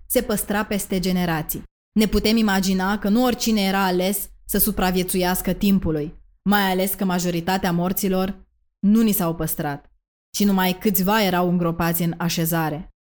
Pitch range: 180-215 Hz